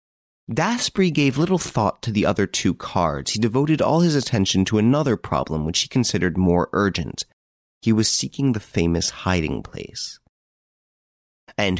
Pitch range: 85-115 Hz